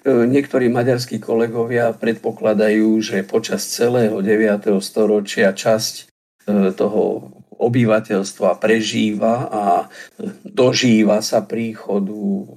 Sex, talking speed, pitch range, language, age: male, 80 wpm, 105-120 Hz, Slovak, 50-69